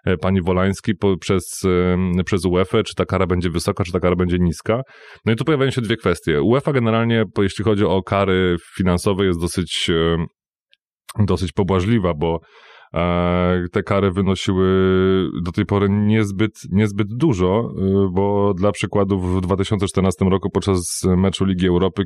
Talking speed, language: 150 wpm, Polish